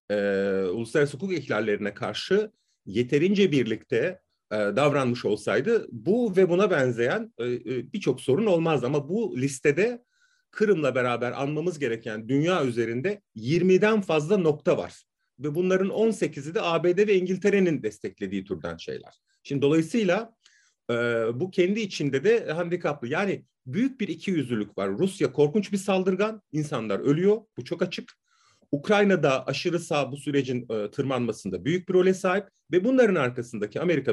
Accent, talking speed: native, 140 wpm